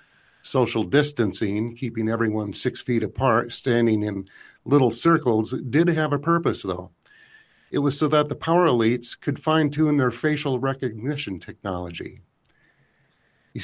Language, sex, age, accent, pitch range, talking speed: English, male, 50-69, American, 110-145 Hz, 130 wpm